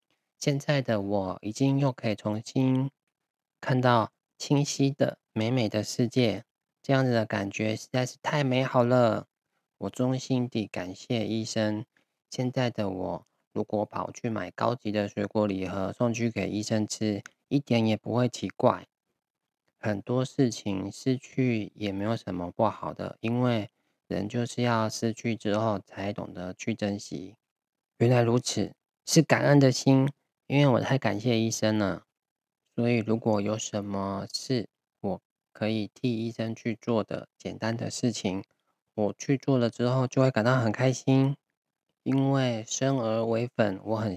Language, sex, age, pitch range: Chinese, male, 20-39, 105-125 Hz